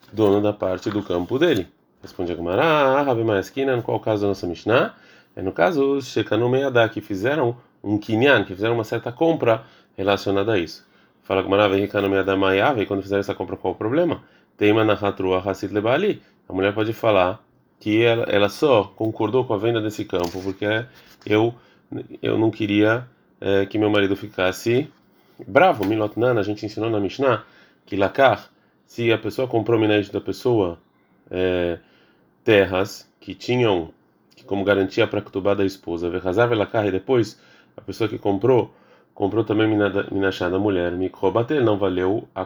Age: 20-39